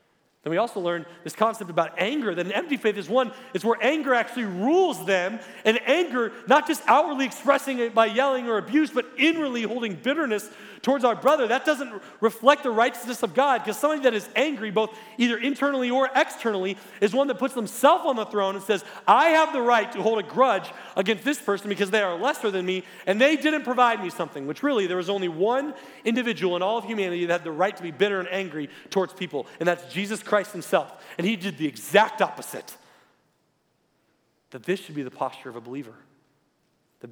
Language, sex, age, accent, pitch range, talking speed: English, male, 40-59, American, 165-240 Hz, 215 wpm